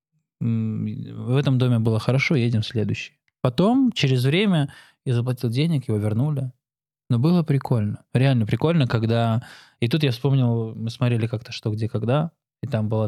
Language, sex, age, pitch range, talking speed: Russian, male, 20-39, 115-135 Hz, 160 wpm